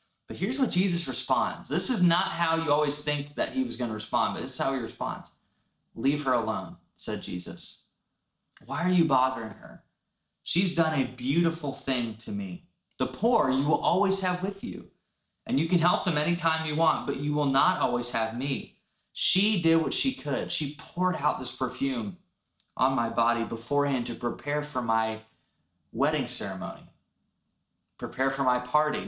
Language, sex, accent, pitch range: English, male, American, 130-175 Hz